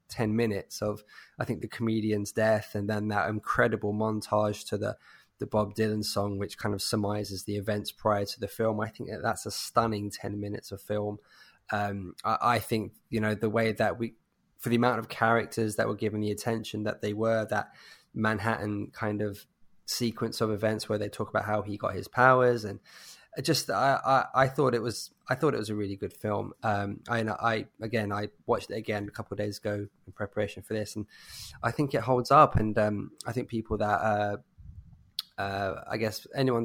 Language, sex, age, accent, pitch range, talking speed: English, male, 20-39, British, 105-115 Hz, 205 wpm